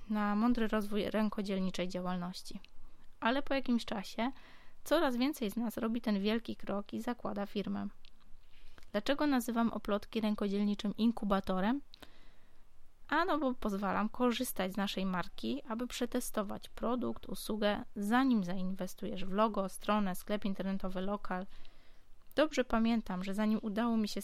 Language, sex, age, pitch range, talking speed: Polish, female, 20-39, 195-235 Hz, 125 wpm